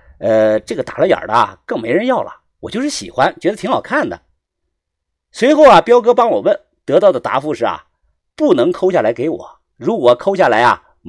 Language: Chinese